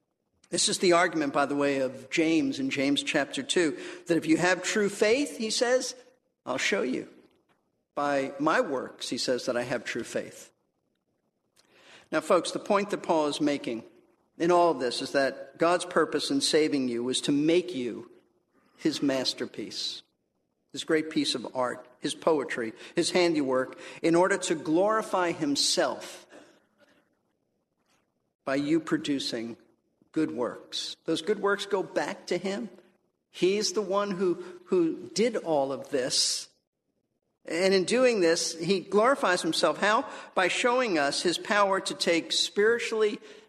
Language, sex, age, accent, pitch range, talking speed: English, male, 50-69, American, 165-230 Hz, 150 wpm